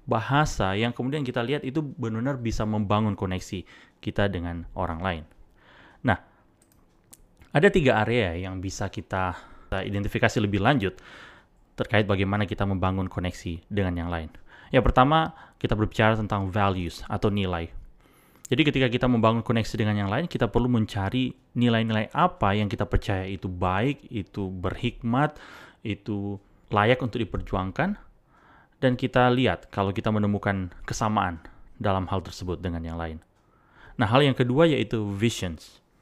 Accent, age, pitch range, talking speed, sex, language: native, 30-49, 95-120 Hz, 140 wpm, male, Indonesian